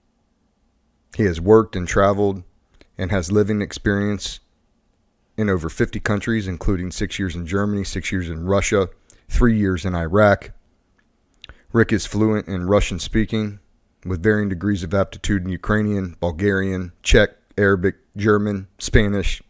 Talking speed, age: 130 wpm, 30-49